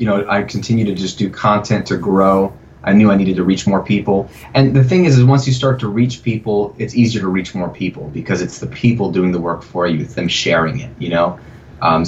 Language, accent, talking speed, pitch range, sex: English, American, 250 wpm, 90-120 Hz, male